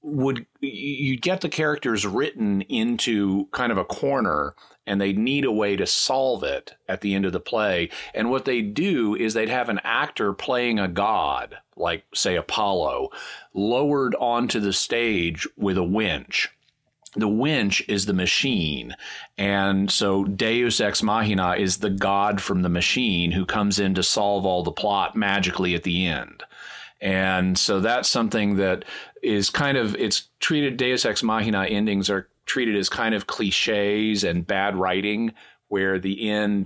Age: 40-59